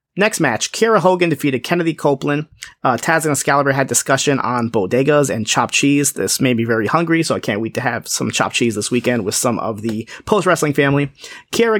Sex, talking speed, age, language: male, 210 wpm, 30-49, English